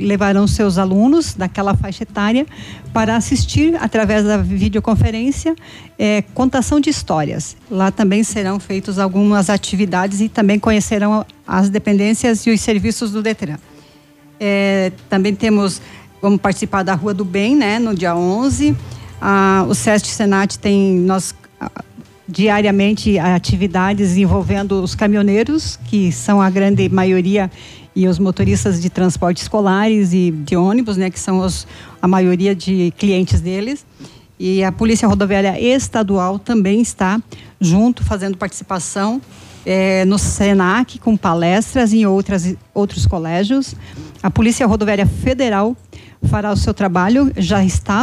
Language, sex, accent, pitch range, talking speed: Portuguese, female, Brazilian, 185-215 Hz, 135 wpm